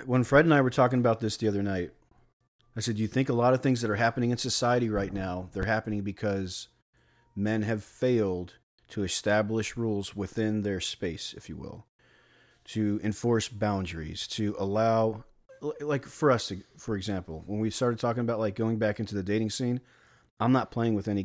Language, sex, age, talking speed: English, male, 40-59, 195 wpm